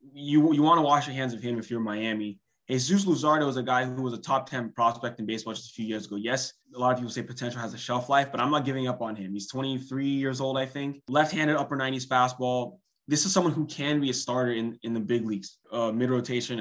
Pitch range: 115-140 Hz